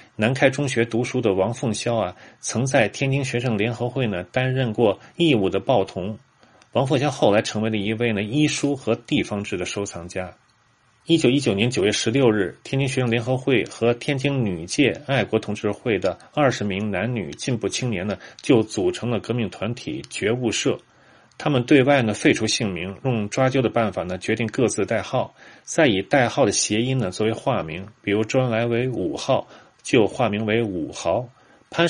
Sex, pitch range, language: male, 105-130 Hz, Chinese